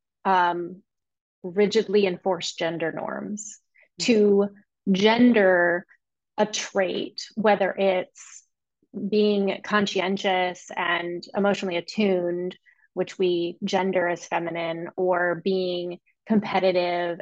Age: 20-39